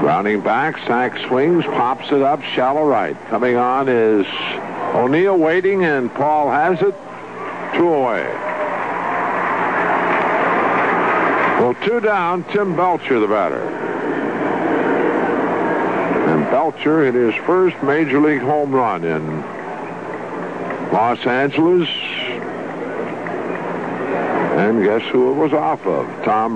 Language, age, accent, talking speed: English, 60-79, American, 105 wpm